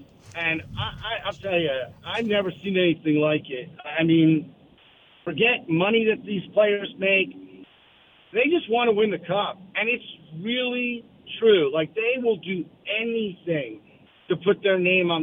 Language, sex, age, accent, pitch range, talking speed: English, male, 50-69, American, 165-225 Hz, 155 wpm